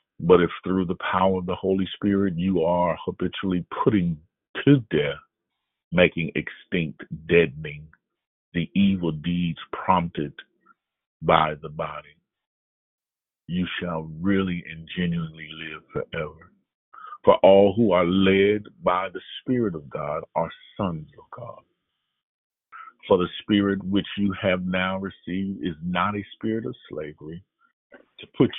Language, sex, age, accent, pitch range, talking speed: English, male, 40-59, American, 80-95 Hz, 130 wpm